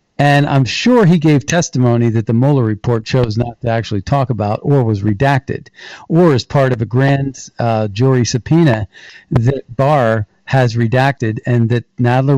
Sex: male